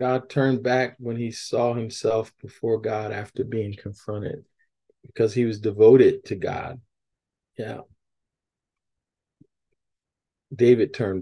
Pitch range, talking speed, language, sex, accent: 125-205 Hz, 110 wpm, English, male, American